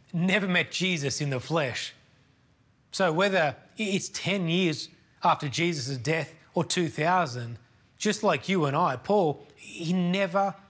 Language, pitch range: English, 140-185 Hz